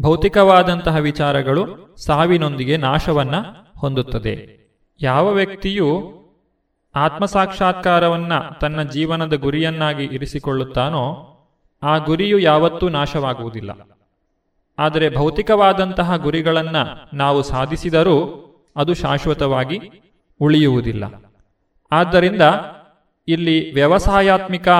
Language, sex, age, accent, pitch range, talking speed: Kannada, male, 30-49, native, 140-175 Hz, 65 wpm